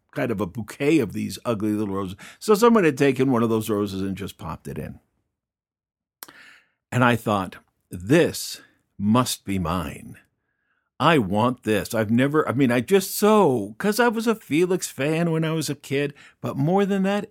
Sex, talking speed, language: male, 185 wpm, English